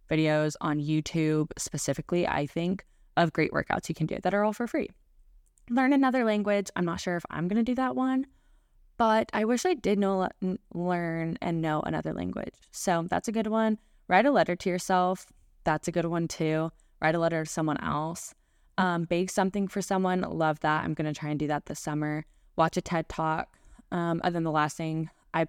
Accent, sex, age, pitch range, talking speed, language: American, female, 20-39, 155-195 Hz, 200 wpm, English